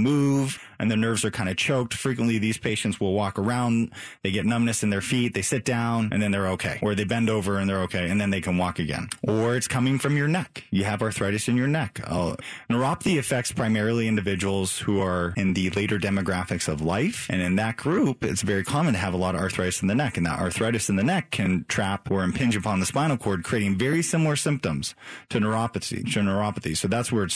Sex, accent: male, American